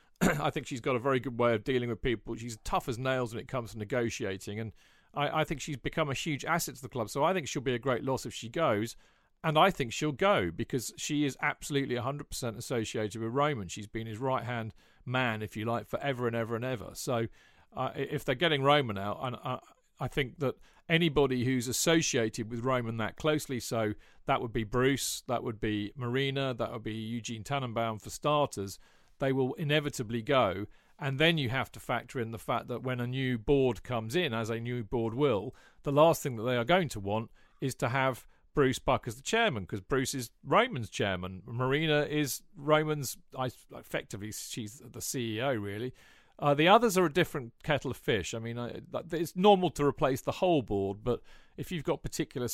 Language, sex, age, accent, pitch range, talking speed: English, male, 40-59, British, 115-145 Hz, 210 wpm